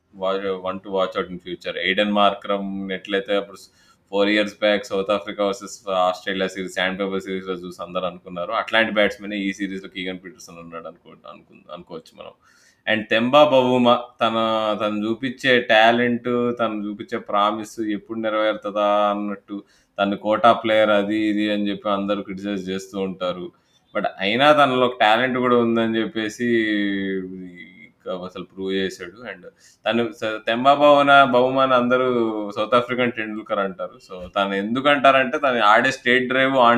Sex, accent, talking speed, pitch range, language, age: male, native, 140 wpm, 100-120 Hz, Telugu, 20-39